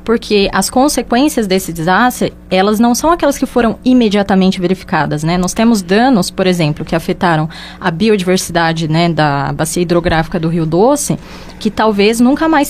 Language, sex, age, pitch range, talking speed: Portuguese, female, 20-39, 180-240 Hz, 160 wpm